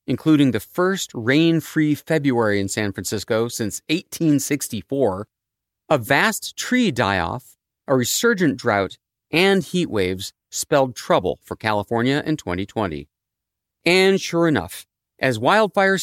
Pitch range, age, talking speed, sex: 120-185 Hz, 40-59, 125 wpm, male